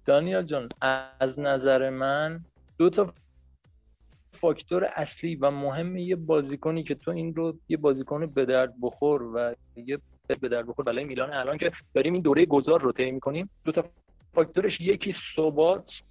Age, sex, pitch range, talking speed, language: 30-49, male, 120-160 Hz, 160 wpm, Persian